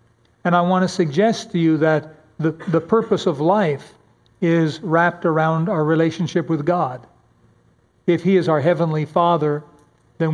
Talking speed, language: 155 wpm, English